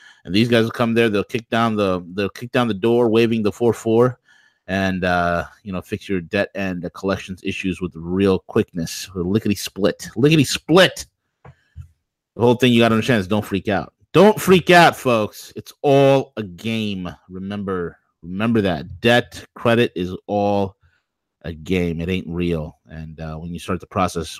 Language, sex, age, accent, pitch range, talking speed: English, male, 30-49, American, 90-115 Hz, 180 wpm